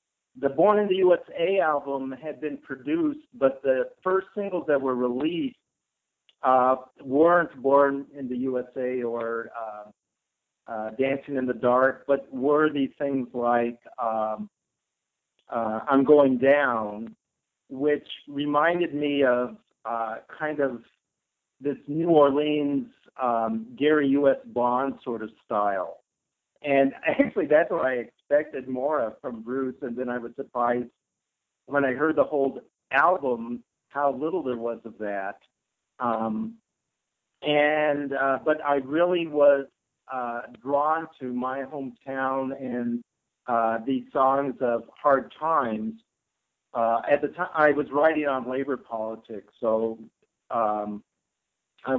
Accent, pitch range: American, 120-145 Hz